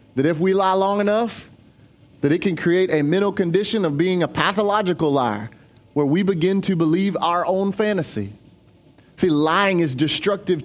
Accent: American